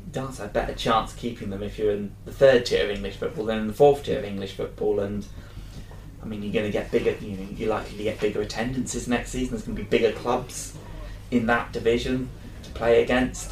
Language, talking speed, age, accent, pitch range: English, 230 wpm, 20-39, British, 100-120 Hz